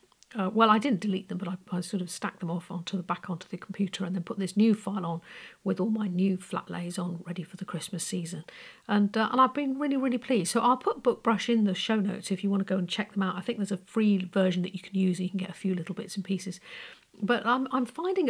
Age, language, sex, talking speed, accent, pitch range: 50-69, English, female, 290 wpm, British, 185-225 Hz